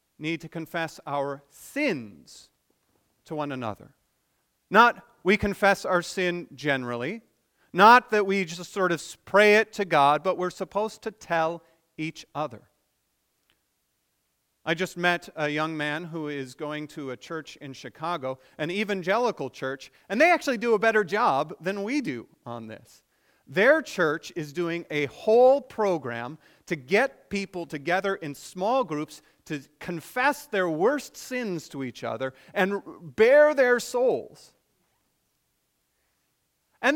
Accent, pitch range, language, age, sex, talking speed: American, 145-210 Hz, English, 40-59, male, 140 wpm